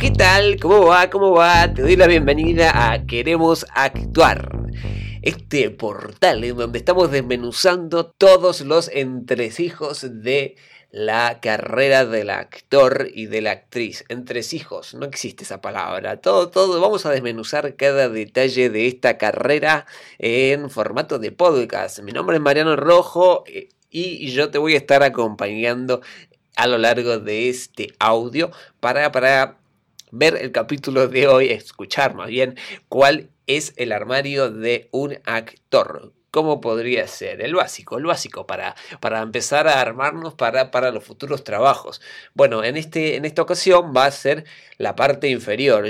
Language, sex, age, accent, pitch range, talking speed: Spanish, male, 20-39, Argentinian, 120-155 Hz, 150 wpm